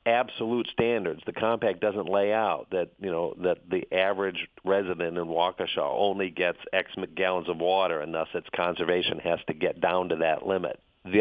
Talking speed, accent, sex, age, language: 180 wpm, American, male, 50-69, English